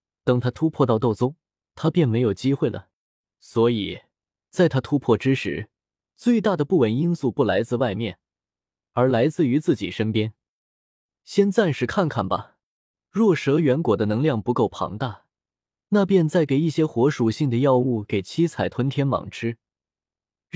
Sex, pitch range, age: male, 115-165 Hz, 20-39